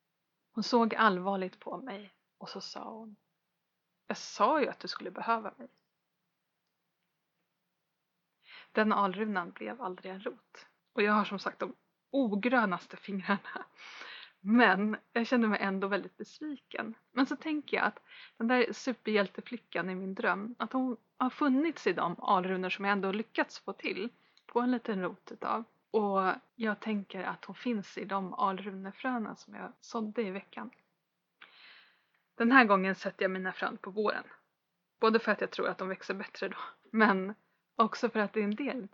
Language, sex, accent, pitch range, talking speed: Swedish, female, native, 190-235 Hz, 165 wpm